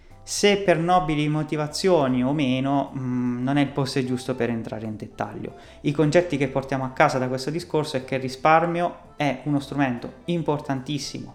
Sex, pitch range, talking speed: male, 125-160 Hz, 170 wpm